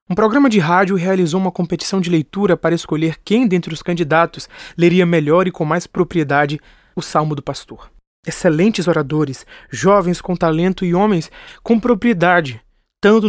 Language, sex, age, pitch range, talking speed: Portuguese, male, 20-39, 155-185 Hz, 160 wpm